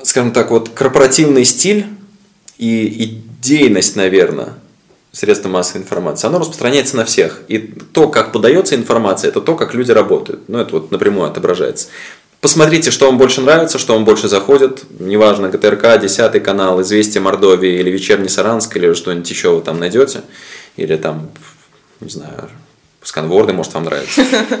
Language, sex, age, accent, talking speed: Russian, male, 20-39, native, 150 wpm